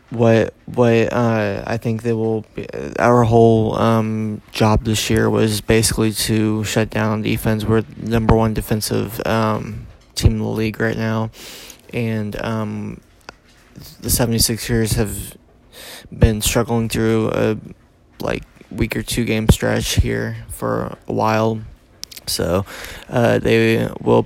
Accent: American